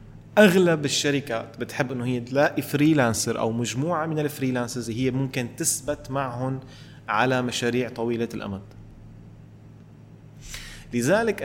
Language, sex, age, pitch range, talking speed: Arabic, male, 30-49, 115-145 Hz, 105 wpm